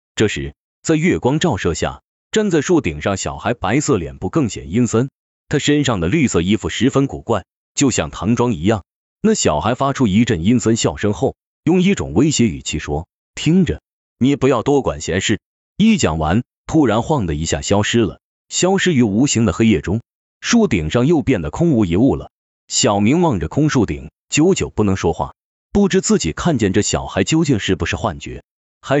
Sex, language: male, Chinese